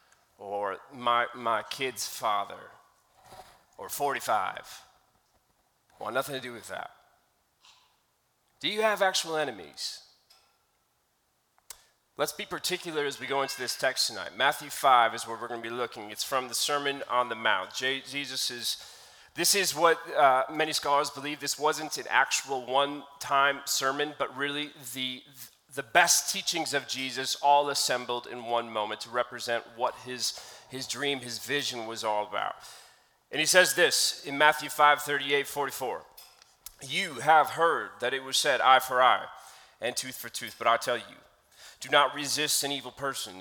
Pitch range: 125-150 Hz